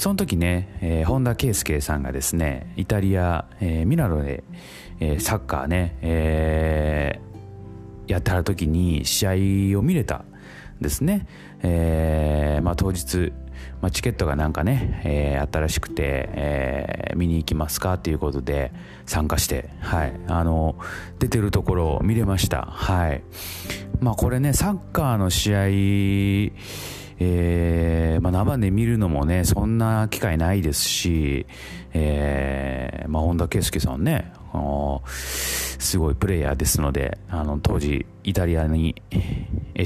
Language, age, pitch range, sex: Japanese, 30-49, 75-100 Hz, male